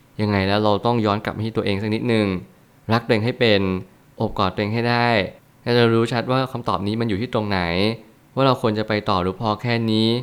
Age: 20-39